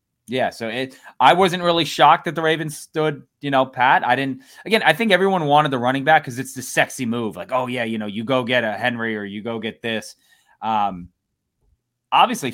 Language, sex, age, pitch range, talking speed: English, male, 20-39, 105-135 Hz, 220 wpm